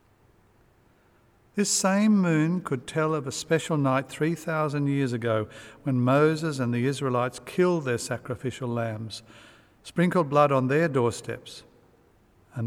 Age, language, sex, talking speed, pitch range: 50-69, English, male, 130 wpm, 110-135 Hz